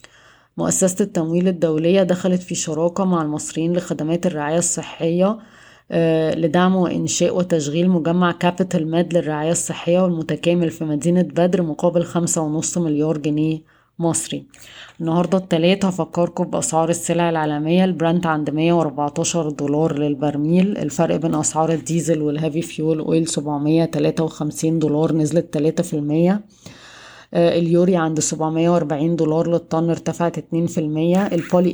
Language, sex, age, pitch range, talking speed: Arabic, female, 20-39, 155-175 Hz, 125 wpm